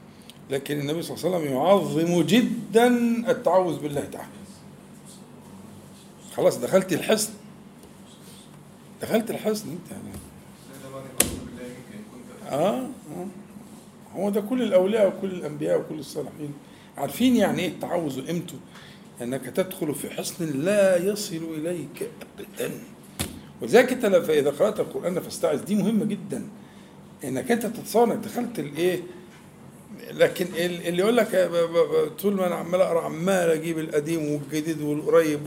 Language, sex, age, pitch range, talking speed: Arabic, male, 50-69, 165-220 Hz, 115 wpm